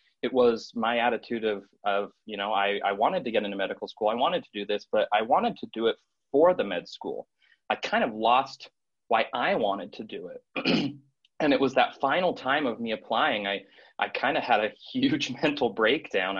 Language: English